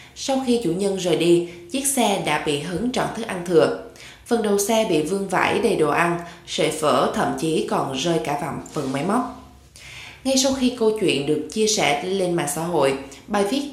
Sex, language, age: female, Vietnamese, 20-39